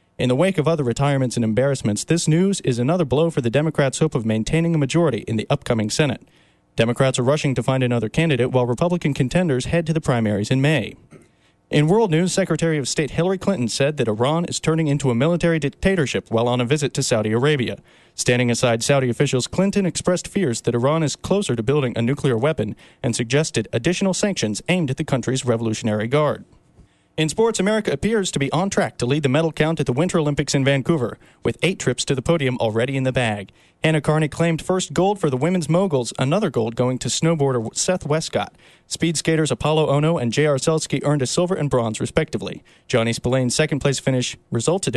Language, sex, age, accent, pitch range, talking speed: English, male, 40-59, American, 125-165 Hz, 205 wpm